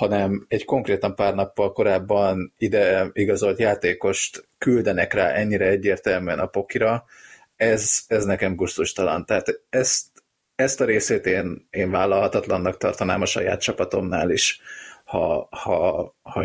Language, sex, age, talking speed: Hungarian, male, 30-49, 130 wpm